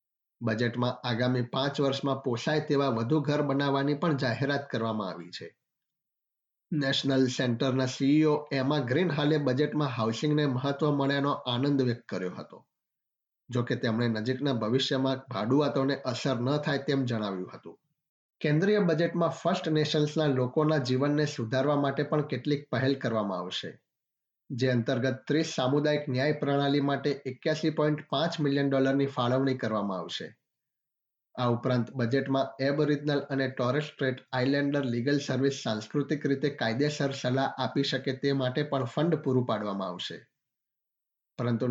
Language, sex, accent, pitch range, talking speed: Gujarati, male, native, 130-145 Hz, 100 wpm